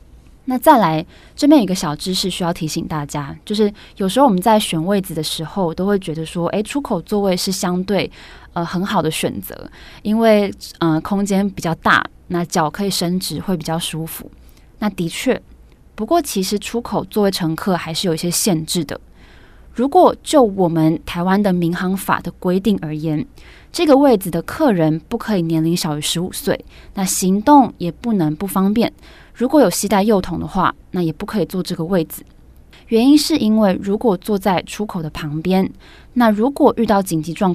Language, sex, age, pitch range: Chinese, female, 20-39, 165-205 Hz